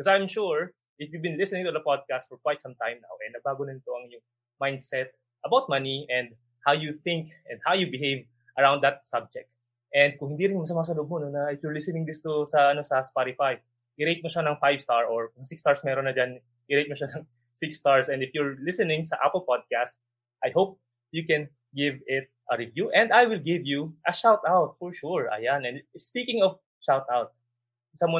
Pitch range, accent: 130-170 Hz, native